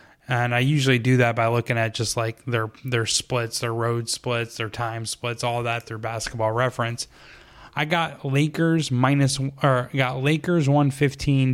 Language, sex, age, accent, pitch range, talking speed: English, male, 10-29, American, 120-135 Hz, 165 wpm